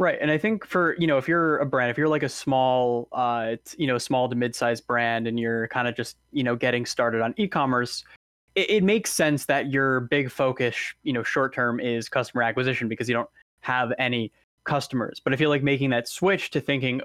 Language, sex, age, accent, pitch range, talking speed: English, male, 10-29, American, 120-140 Hz, 230 wpm